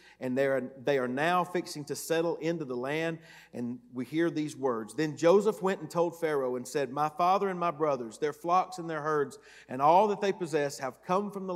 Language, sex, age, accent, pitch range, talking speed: English, male, 50-69, American, 150-195 Hz, 230 wpm